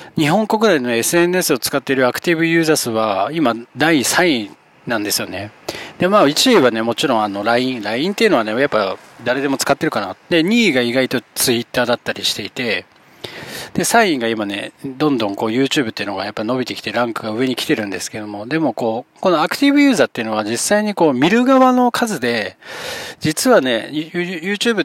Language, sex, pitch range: Japanese, male, 115-170 Hz